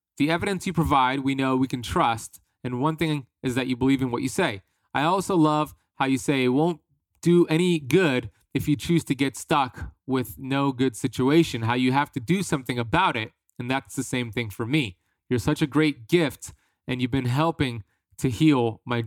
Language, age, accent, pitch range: English, 30-49, American, 115-145 Hz